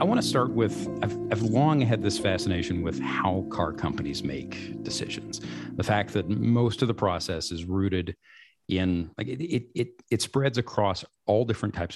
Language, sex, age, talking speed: English, male, 50-69, 185 wpm